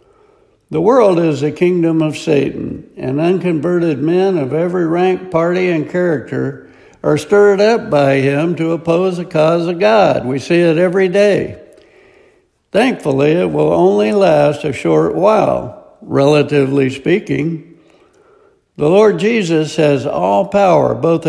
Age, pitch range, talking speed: 60-79, 145-200 Hz, 140 wpm